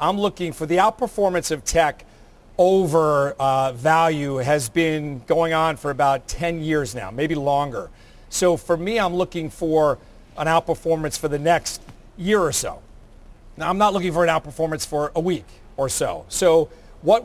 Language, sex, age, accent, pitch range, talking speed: English, male, 40-59, American, 150-180 Hz, 170 wpm